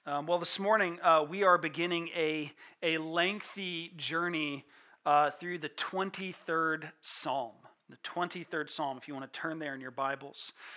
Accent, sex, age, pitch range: American, male, 40-59, 150-175 Hz